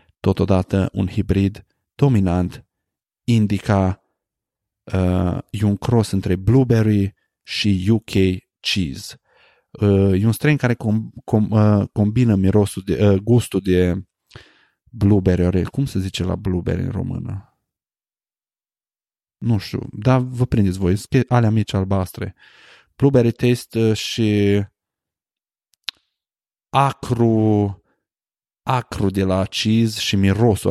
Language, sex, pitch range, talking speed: Romanian, male, 95-115 Hz, 110 wpm